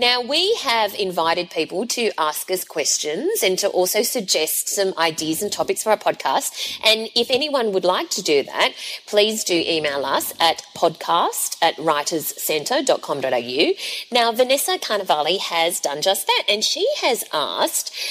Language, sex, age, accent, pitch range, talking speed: English, female, 30-49, Australian, 175-265 Hz, 150 wpm